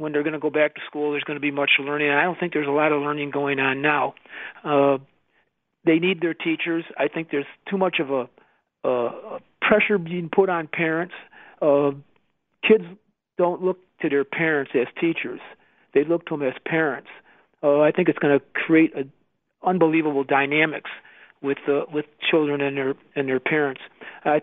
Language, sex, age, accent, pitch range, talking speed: English, male, 50-69, American, 145-175 Hz, 190 wpm